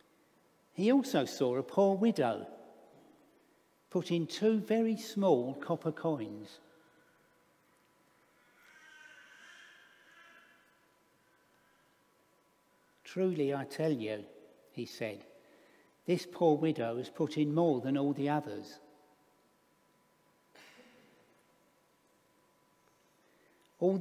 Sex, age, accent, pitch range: male, 60-79, British, 145-185 Hz